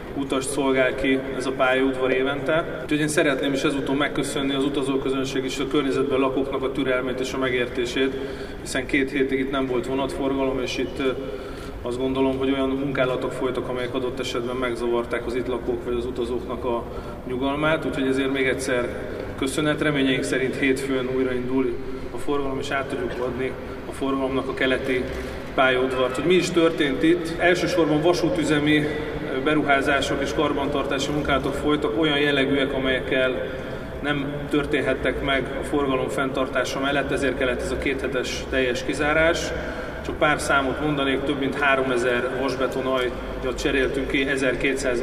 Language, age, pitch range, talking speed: Hungarian, 30-49, 130-140 Hz, 150 wpm